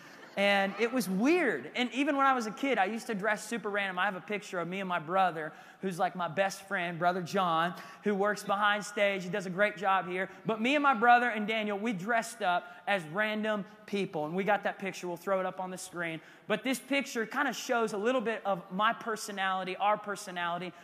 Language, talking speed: English, 235 wpm